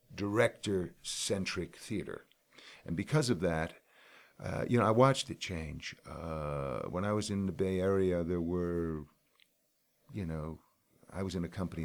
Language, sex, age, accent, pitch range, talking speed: English, male, 50-69, American, 85-105 Hz, 155 wpm